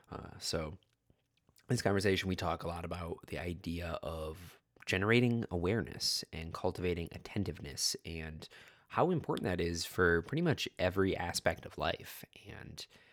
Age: 20-39